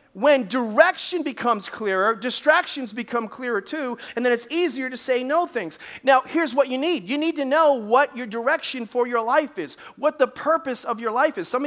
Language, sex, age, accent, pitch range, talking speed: English, male, 40-59, American, 225-275 Hz, 205 wpm